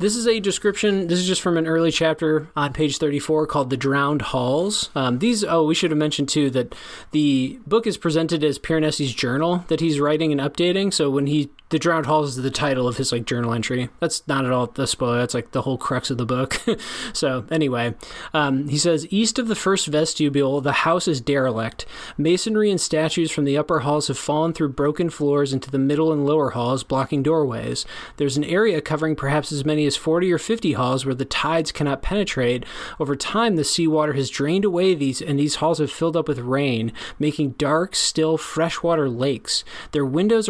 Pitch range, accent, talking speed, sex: 135-165 Hz, American, 210 wpm, male